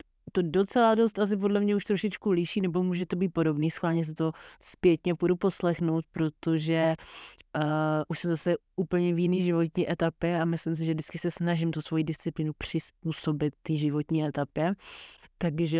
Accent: native